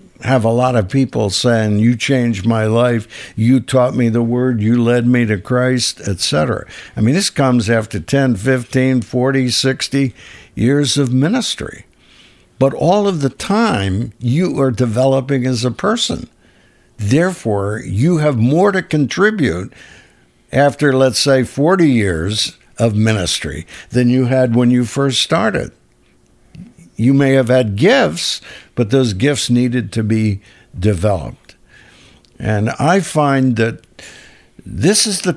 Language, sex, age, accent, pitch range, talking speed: English, male, 60-79, American, 110-155 Hz, 140 wpm